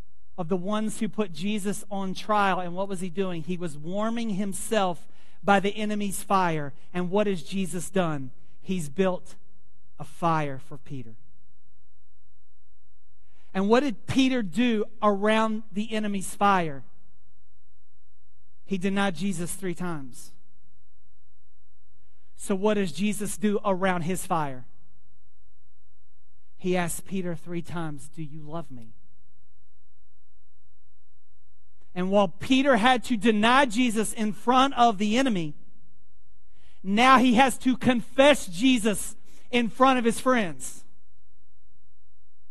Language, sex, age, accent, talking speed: English, male, 40-59, American, 120 wpm